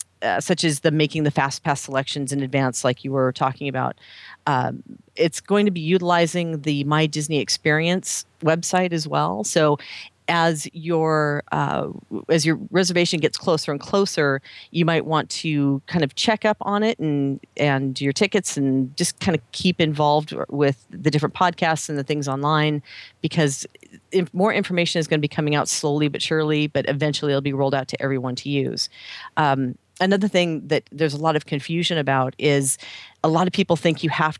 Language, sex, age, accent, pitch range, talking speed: English, female, 40-59, American, 140-165 Hz, 190 wpm